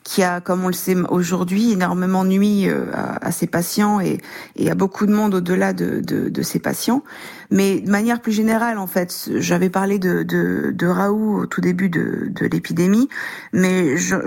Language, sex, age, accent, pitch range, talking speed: French, female, 40-59, French, 180-205 Hz, 185 wpm